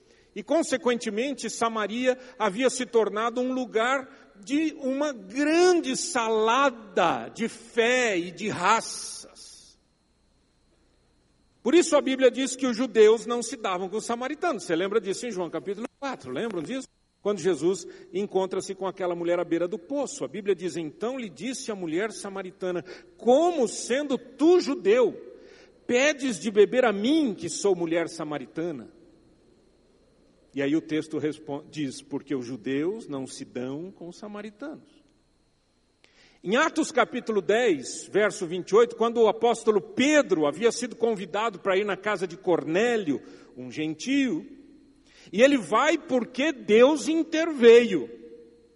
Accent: Brazilian